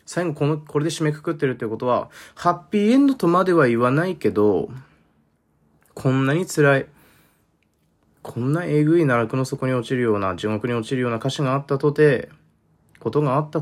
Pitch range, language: 105-150 Hz, Japanese